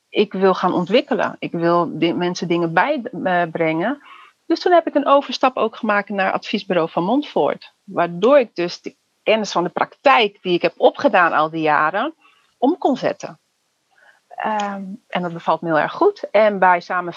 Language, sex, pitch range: Dutch, female, 180-240 Hz